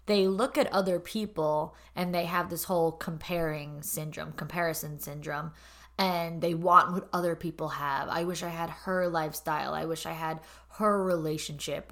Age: 20-39